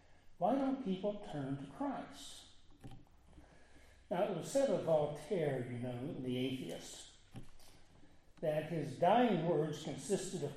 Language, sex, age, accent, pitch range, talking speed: English, male, 60-79, American, 130-180 Hz, 125 wpm